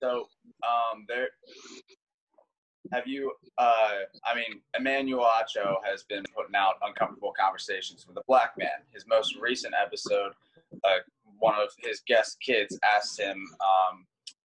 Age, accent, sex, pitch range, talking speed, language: 20-39, American, male, 110-150 Hz, 135 wpm, English